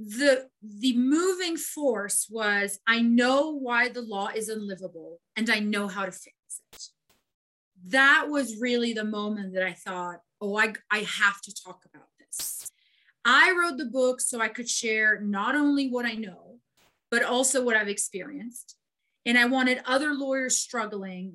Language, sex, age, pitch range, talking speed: English, female, 30-49, 195-250 Hz, 165 wpm